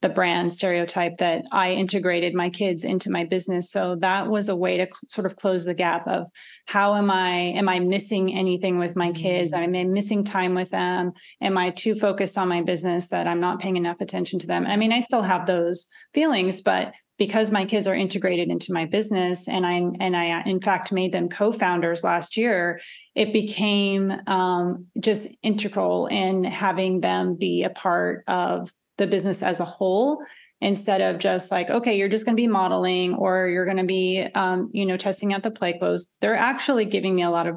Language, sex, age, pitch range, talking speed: English, female, 30-49, 175-200 Hz, 205 wpm